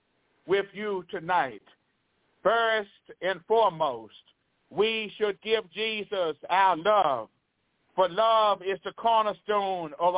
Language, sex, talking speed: English, male, 105 wpm